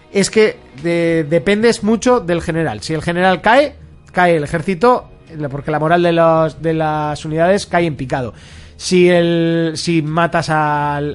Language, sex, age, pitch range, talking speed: Spanish, male, 30-49, 135-170 Hz, 160 wpm